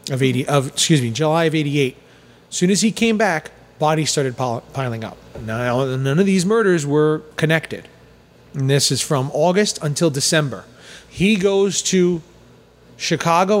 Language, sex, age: English, male, 30-49